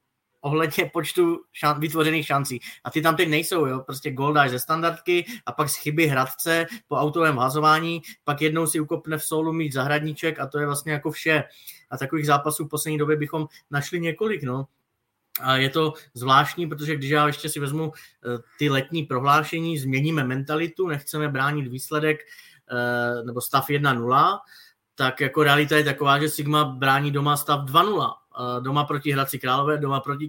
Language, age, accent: Czech, 20-39, native